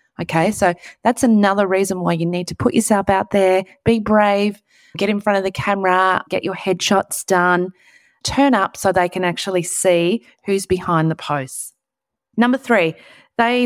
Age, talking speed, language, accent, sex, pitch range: 30-49, 170 wpm, English, Australian, female, 165-215 Hz